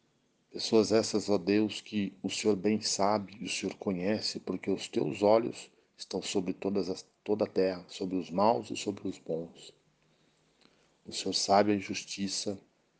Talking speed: 155 wpm